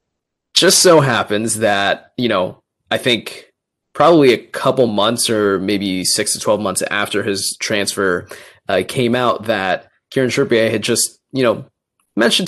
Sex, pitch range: male, 105-125 Hz